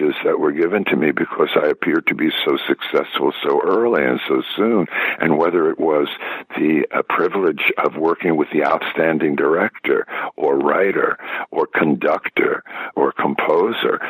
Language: English